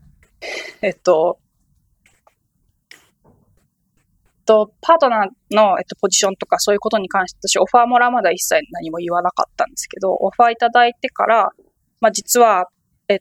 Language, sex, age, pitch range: Japanese, female, 20-39, 185-245 Hz